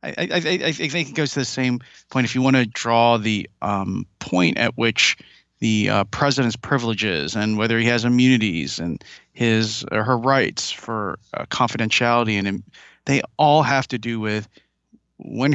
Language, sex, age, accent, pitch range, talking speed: English, male, 40-59, American, 110-135 Hz, 180 wpm